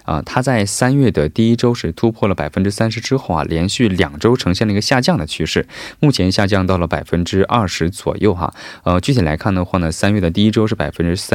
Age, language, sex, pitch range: 20-39, Korean, male, 85-105 Hz